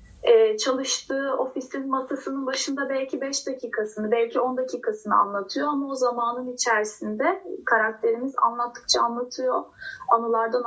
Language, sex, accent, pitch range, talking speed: Turkish, female, native, 225-290 Hz, 110 wpm